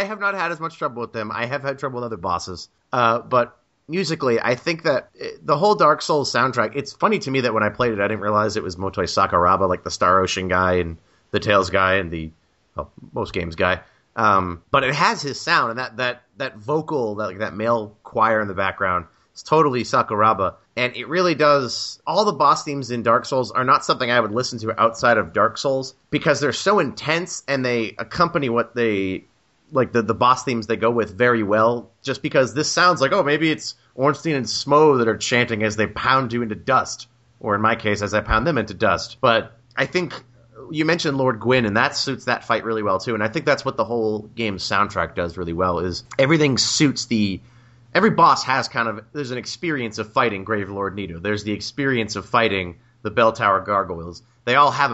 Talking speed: 225 wpm